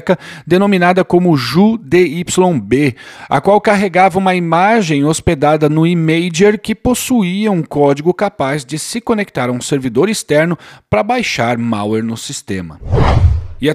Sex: male